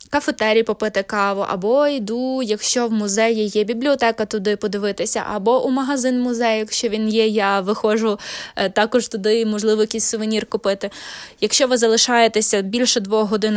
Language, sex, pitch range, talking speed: Ukrainian, female, 205-250 Hz, 150 wpm